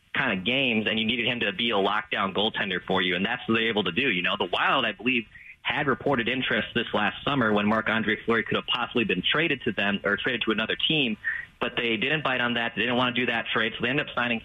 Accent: American